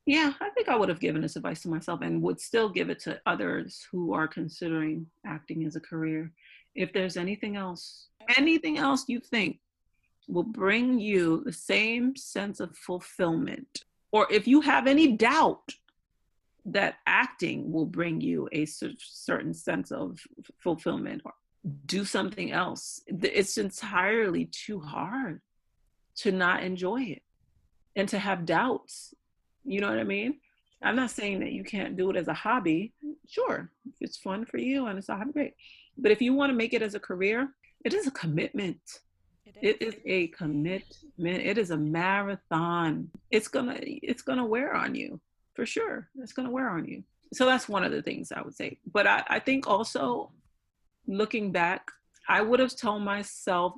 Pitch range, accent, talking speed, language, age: 175-255 Hz, American, 175 wpm, English, 40-59